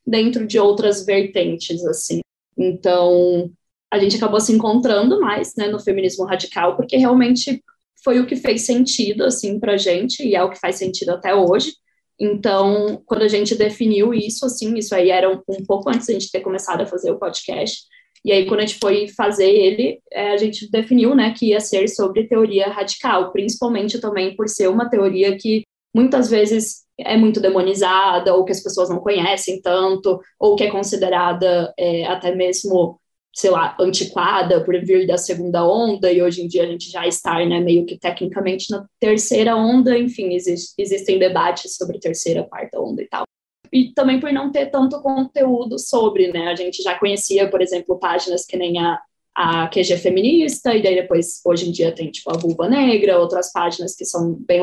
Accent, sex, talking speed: Brazilian, female, 190 wpm